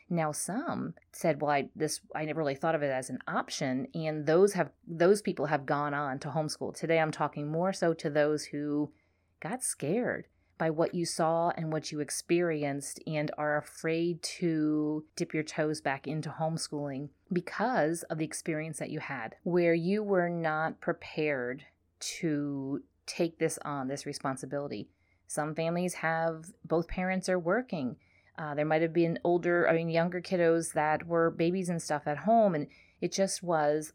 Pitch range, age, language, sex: 150-175 Hz, 30-49, English, female